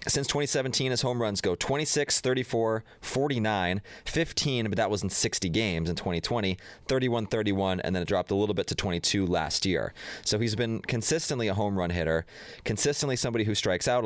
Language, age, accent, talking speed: English, 30-49, American, 190 wpm